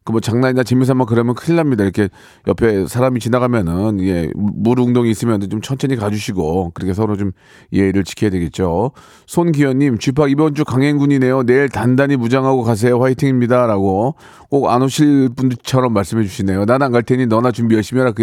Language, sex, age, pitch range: Korean, male, 40-59, 110-150 Hz